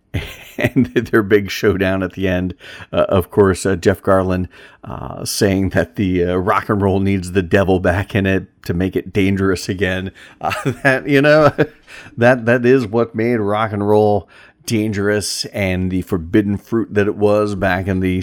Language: English